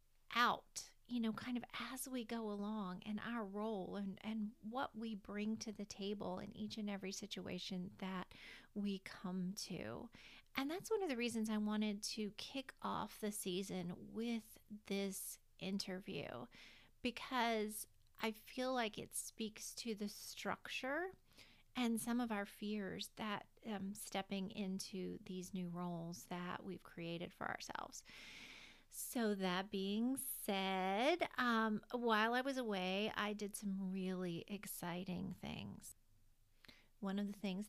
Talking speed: 145 wpm